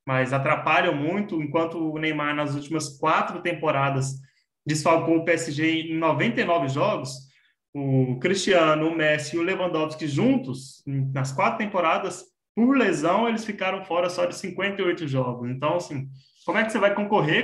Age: 20-39